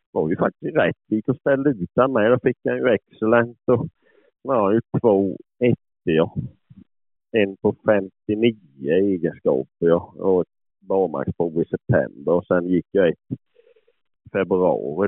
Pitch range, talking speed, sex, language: 85-110 Hz, 130 wpm, male, Swedish